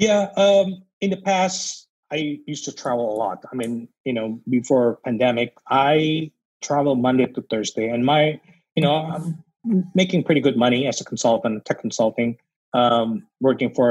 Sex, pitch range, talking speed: male, 120-145 Hz, 170 wpm